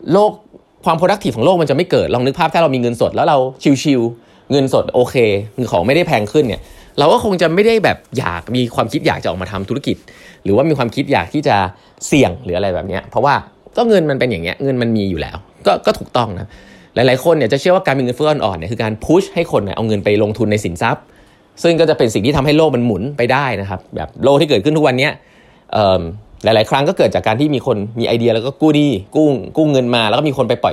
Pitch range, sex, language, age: 110-155 Hz, male, Thai, 20-39